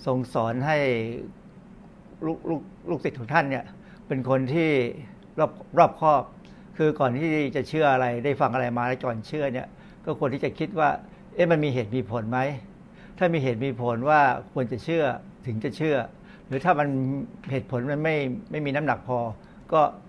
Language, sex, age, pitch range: Thai, male, 60-79, 125-165 Hz